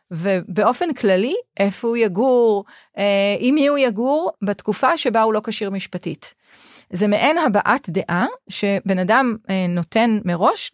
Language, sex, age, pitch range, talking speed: Hebrew, female, 30-49, 185-220 Hz, 125 wpm